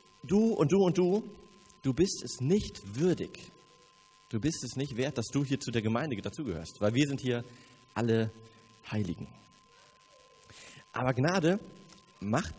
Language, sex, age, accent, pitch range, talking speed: German, male, 30-49, German, 110-150 Hz, 150 wpm